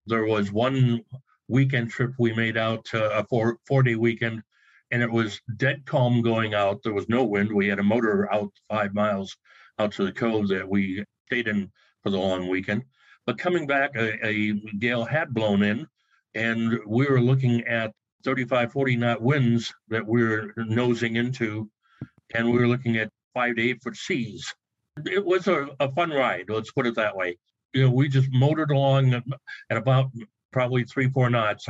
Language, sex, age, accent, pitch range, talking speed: English, male, 60-79, American, 110-125 Hz, 180 wpm